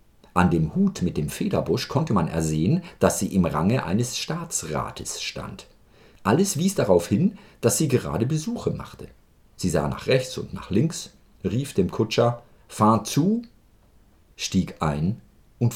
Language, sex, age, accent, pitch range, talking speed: German, male, 50-69, German, 90-130 Hz, 150 wpm